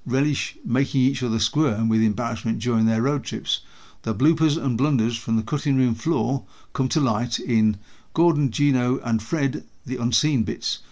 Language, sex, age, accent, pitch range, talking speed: English, male, 60-79, British, 115-150 Hz, 170 wpm